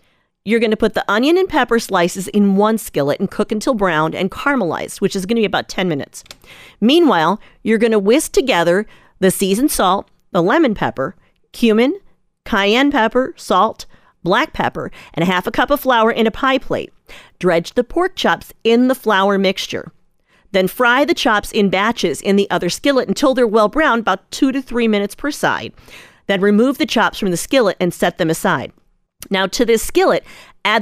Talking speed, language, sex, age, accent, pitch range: 185 wpm, English, female, 40-59, American, 190-255 Hz